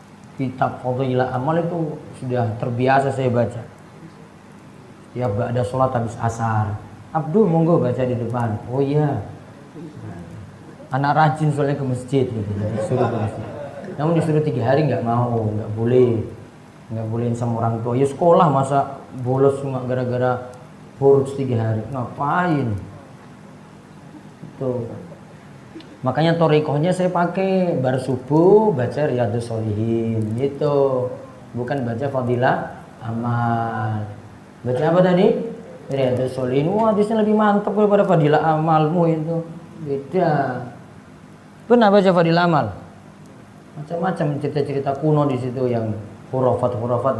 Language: Indonesian